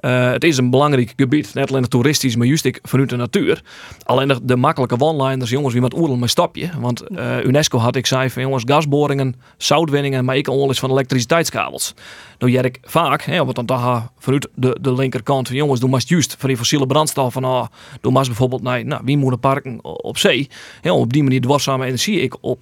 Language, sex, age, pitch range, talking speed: Dutch, male, 30-49, 130-155 Hz, 220 wpm